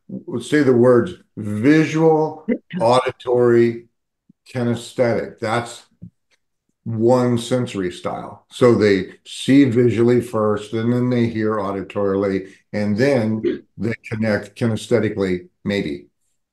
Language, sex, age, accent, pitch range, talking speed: English, male, 50-69, American, 105-125 Hz, 100 wpm